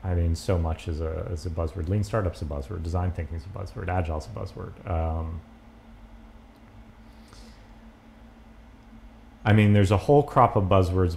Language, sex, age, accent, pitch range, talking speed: English, male, 30-49, American, 80-105 Hz, 155 wpm